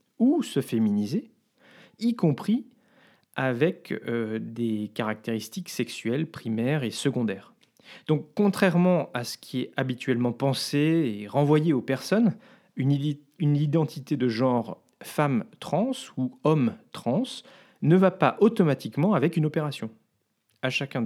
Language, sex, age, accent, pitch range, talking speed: French, male, 40-59, French, 125-190 Hz, 125 wpm